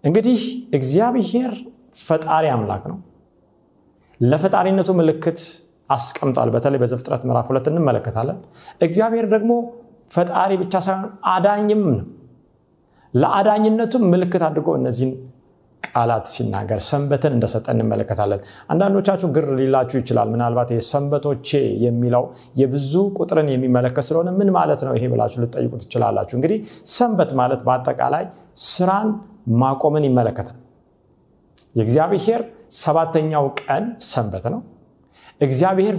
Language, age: Amharic, 40-59